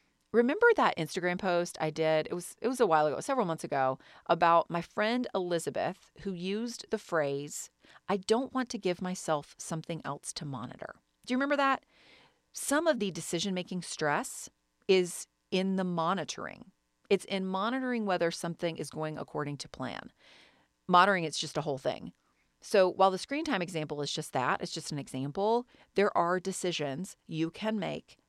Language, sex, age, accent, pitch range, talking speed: English, female, 40-59, American, 160-215 Hz, 175 wpm